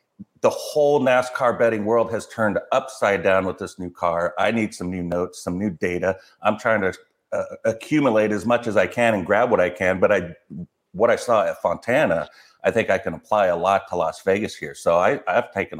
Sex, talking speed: male, 220 wpm